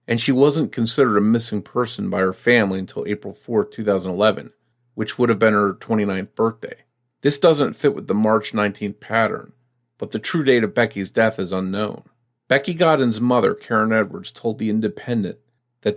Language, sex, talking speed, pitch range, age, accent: English, male, 175 wpm, 105-130 Hz, 40-59, American